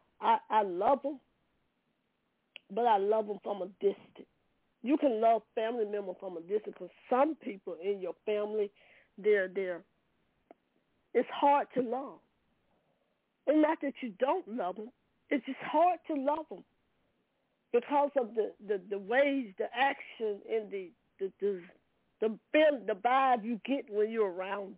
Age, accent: 40-59, American